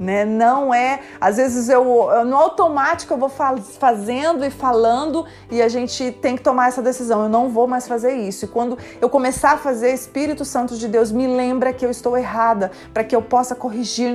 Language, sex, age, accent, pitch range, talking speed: Portuguese, female, 30-49, Brazilian, 220-250 Hz, 200 wpm